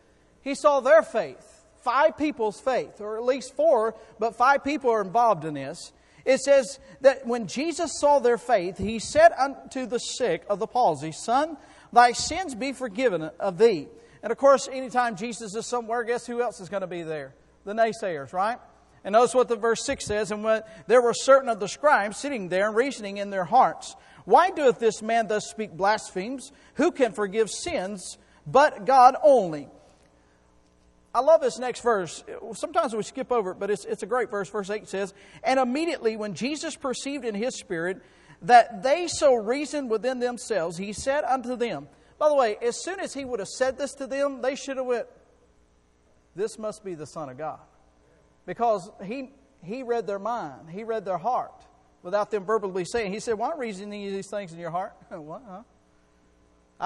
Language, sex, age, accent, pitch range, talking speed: English, male, 50-69, American, 195-260 Hz, 195 wpm